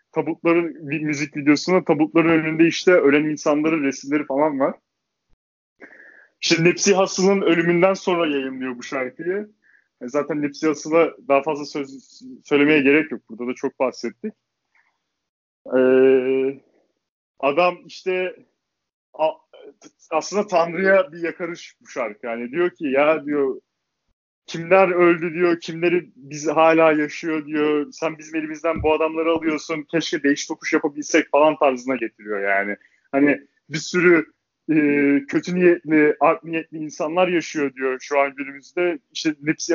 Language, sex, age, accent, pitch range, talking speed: Turkish, male, 30-49, native, 145-170 Hz, 130 wpm